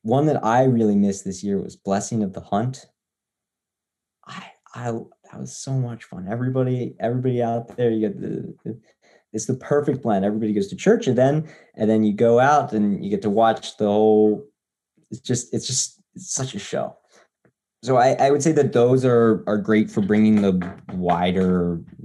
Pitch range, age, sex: 100-125 Hz, 20-39, male